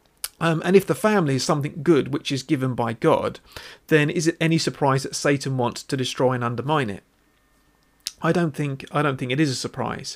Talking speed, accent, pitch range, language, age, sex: 215 wpm, British, 130-160 Hz, English, 40-59, male